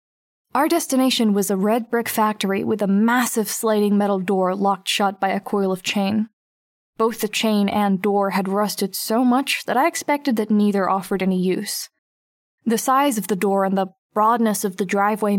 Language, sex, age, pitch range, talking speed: English, female, 10-29, 200-230 Hz, 185 wpm